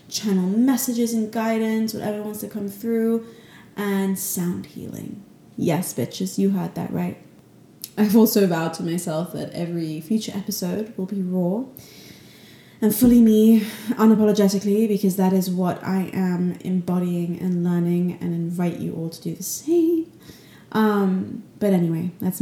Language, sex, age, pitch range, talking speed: English, female, 20-39, 175-215 Hz, 145 wpm